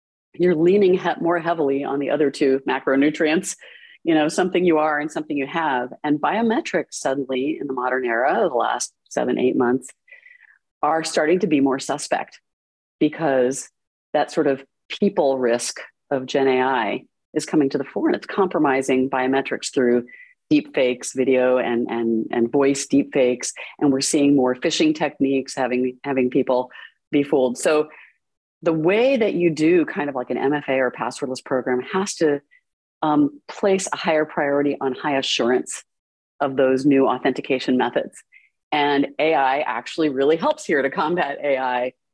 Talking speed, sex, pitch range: 160 wpm, female, 130-160 Hz